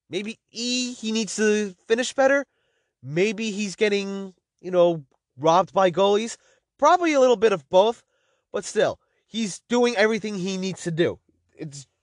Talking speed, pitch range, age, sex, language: 155 wpm, 165-210 Hz, 30-49, male, English